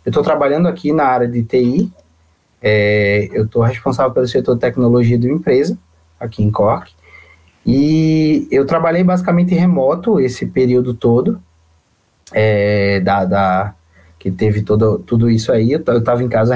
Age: 20-39